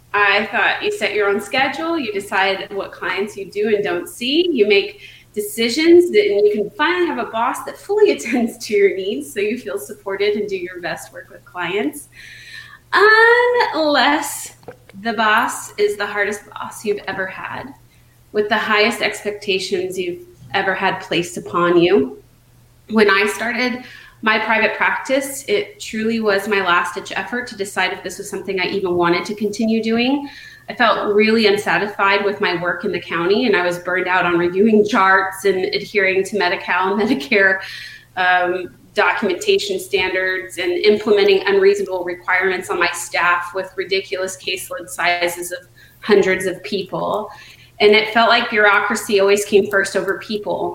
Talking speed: 165 wpm